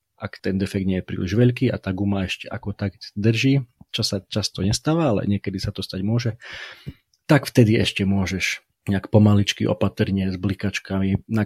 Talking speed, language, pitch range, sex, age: 180 wpm, Slovak, 95-110 Hz, male, 30-49